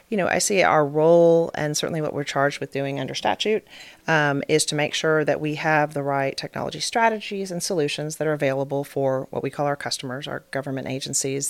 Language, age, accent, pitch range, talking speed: English, 40-59, American, 140-170 Hz, 215 wpm